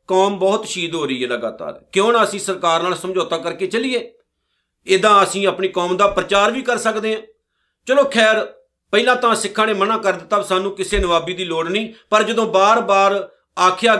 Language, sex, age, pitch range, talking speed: Punjabi, male, 50-69, 185-225 Hz, 195 wpm